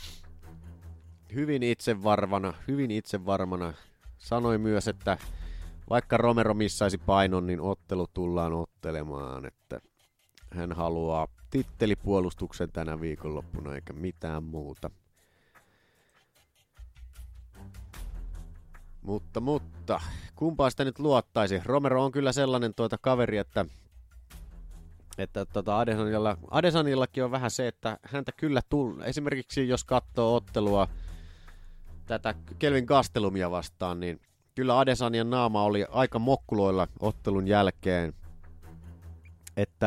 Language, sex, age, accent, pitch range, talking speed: Finnish, male, 30-49, native, 85-115 Hz, 95 wpm